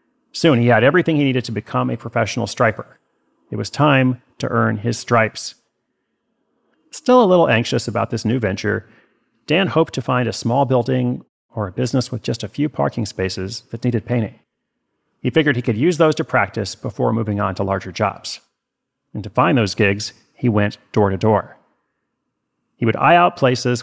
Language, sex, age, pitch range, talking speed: English, male, 40-59, 110-130 Hz, 185 wpm